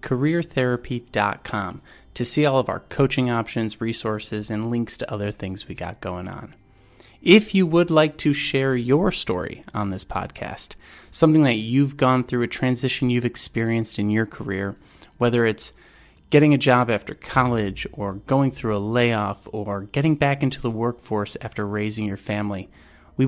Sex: male